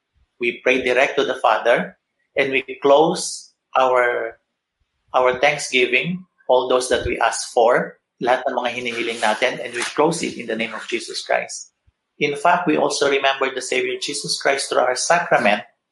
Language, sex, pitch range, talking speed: Filipino, male, 120-160 Hz, 150 wpm